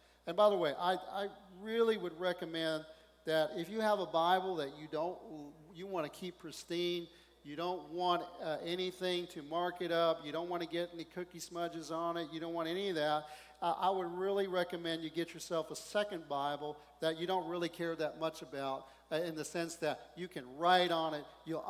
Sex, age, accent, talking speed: male, 50-69, American, 215 wpm